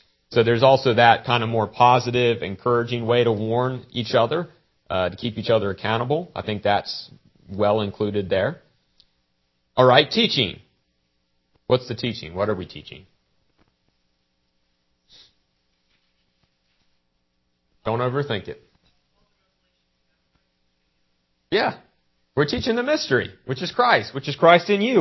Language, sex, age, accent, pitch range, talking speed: English, male, 40-59, American, 90-145 Hz, 125 wpm